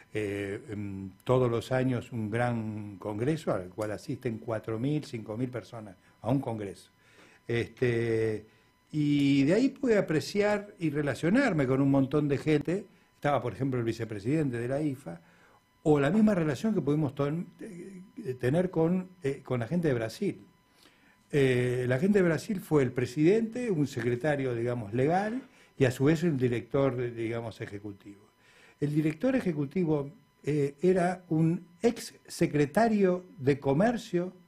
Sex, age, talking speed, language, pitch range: male, 60-79, 145 wpm, Spanish, 125-180 Hz